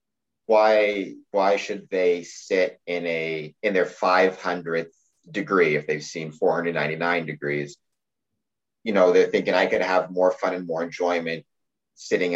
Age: 30-49